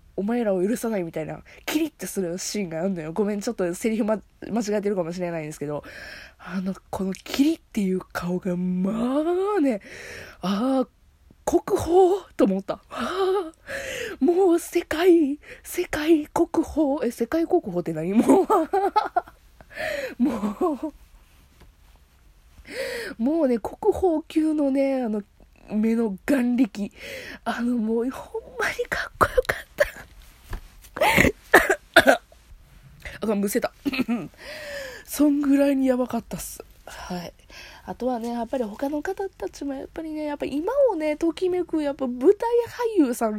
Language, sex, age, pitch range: Japanese, female, 20-39, 215-335 Hz